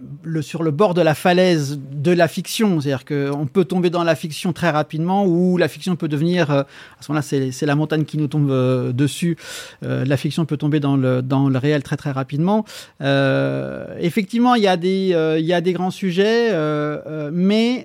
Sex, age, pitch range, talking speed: male, 40-59, 145-180 Hz, 220 wpm